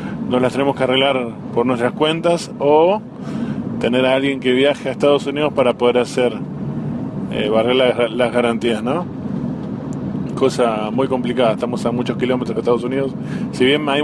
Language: Spanish